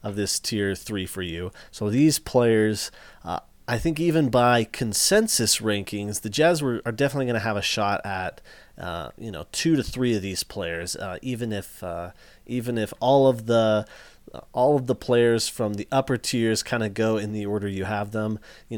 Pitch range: 100-130 Hz